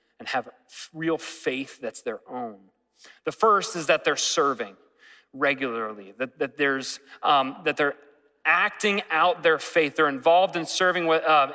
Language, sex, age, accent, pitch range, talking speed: English, male, 30-49, American, 140-185 Hz, 160 wpm